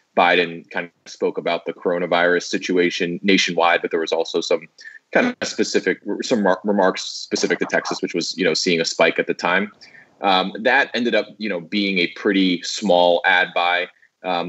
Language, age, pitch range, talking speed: English, 20-39, 85-100 Hz, 190 wpm